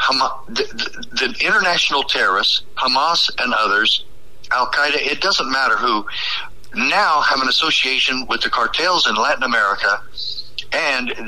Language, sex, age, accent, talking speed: English, male, 60-79, American, 130 wpm